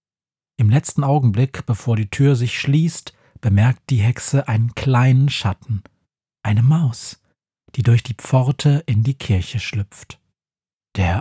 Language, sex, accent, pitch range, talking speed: German, male, German, 110-135 Hz, 135 wpm